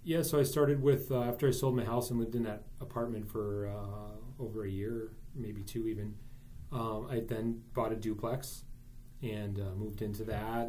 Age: 30-49